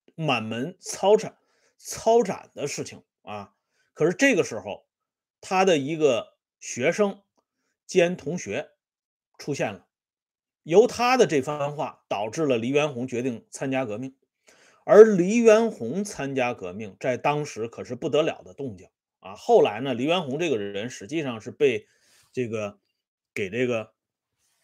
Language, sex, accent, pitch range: Swedish, male, Chinese, 130-210 Hz